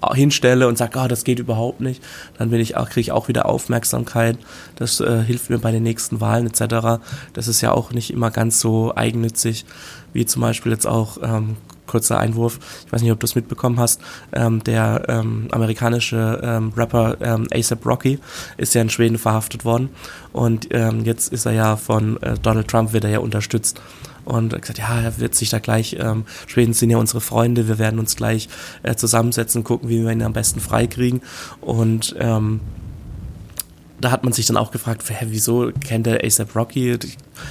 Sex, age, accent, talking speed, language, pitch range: male, 20-39, German, 195 wpm, German, 110-120 Hz